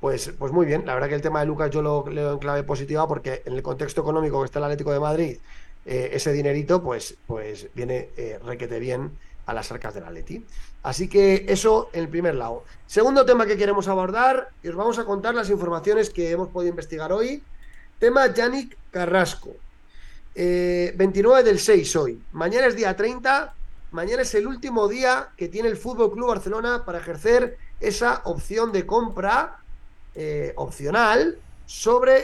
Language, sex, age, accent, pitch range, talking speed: Spanish, male, 30-49, Spanish, 170-230 Hz, 180 wpm